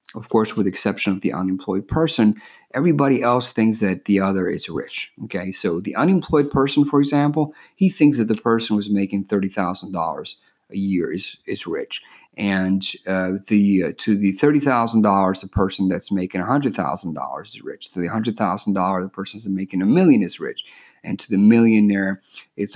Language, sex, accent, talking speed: English, male, American, 200 wpm